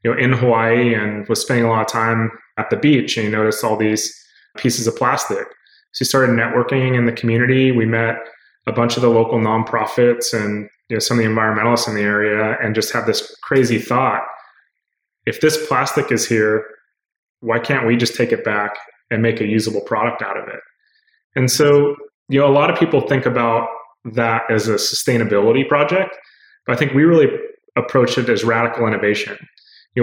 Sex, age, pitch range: male, 20-39, 115-130 Hz